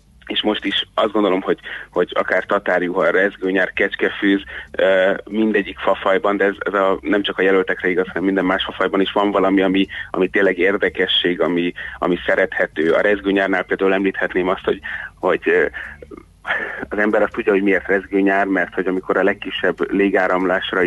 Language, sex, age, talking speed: Hungarian, male, 30-49, 165 wpm